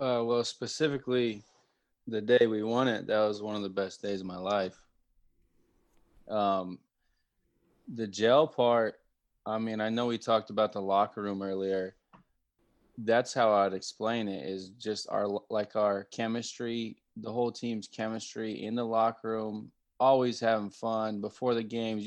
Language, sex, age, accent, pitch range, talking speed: English, male, 20-39, American, 100-115 Hz, 155 wpm